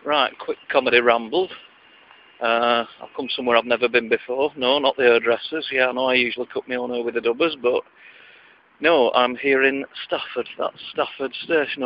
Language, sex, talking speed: English, male, 180 wpm